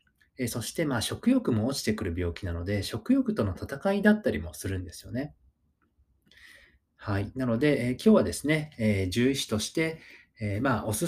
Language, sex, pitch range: Japanese, male, 105-160 Hz